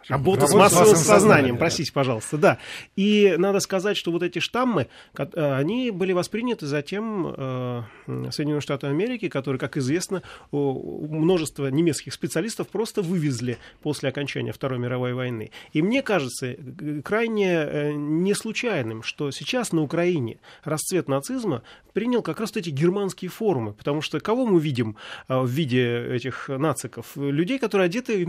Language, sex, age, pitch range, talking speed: Russian, male, 30-49, 140-190 Hz, 135 wpm